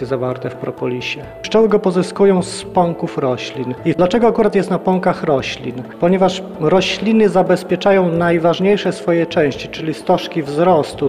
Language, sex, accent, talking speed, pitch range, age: Polish, male, native, 135 wpm, 145-185 Hz, 40-59